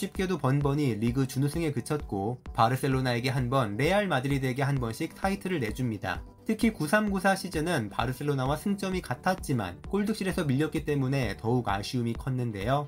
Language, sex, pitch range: Korean, male, 120-175 Hz